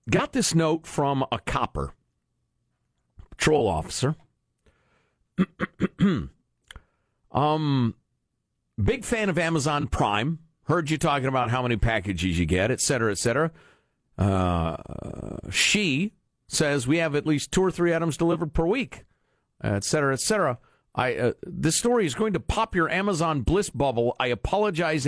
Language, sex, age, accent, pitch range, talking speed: English, male, 50-69, American, 110-165 Hz, 140 wpm